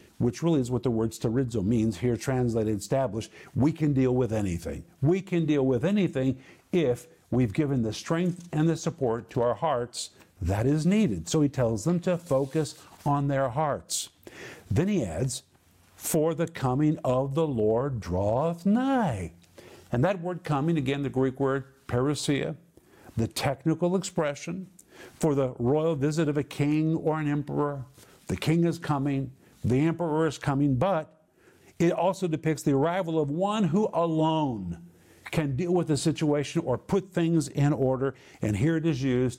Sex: male